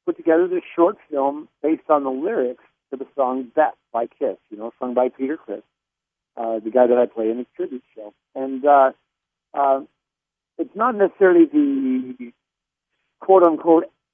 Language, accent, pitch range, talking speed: English, American, 130-155 Hz, 165 wpm